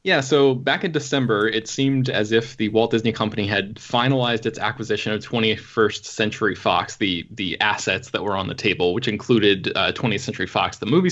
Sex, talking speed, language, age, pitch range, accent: male, 200 wpm, English, 20-39, 105-130 Hz, American